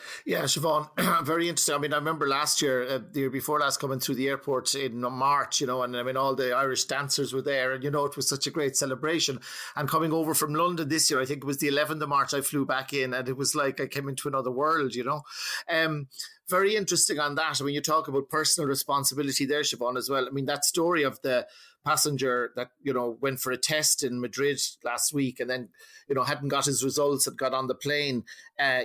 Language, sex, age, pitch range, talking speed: English, male, 30-49, 130-150 Hz, 250 wpm